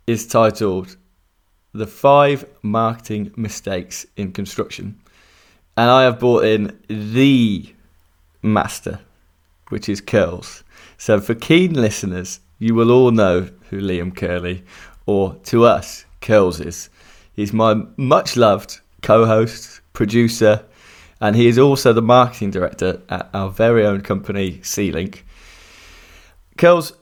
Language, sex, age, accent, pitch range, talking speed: English, male, 20-39, British, 90-115 Hz, 120 wpm